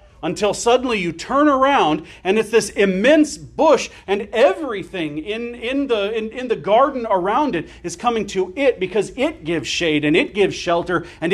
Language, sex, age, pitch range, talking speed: English, male, 40-59, 150-225 Hz, 180 wpm